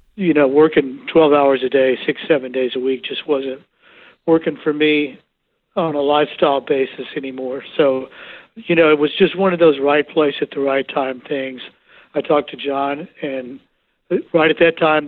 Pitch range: 130-155 Hz